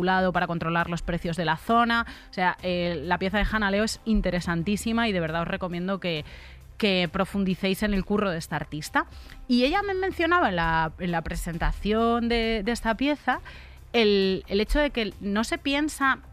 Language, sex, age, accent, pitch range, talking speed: Spanish, female, 30-49, Spanish, 185-245 Hz, 190 wpm